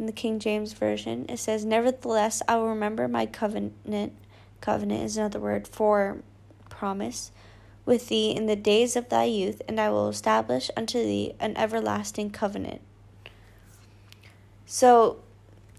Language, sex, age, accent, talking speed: English, female, 20-39, American, 140 wpm